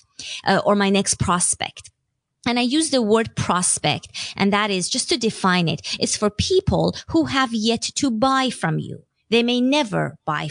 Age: 20-39